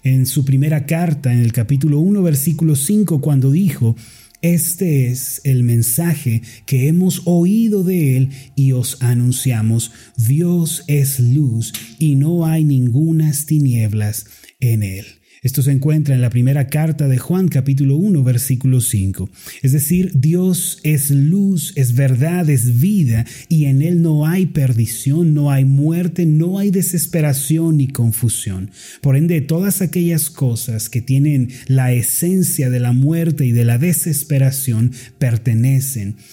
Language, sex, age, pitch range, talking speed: Spanish, male, 30-49, 125-160 Hz, 145 wpm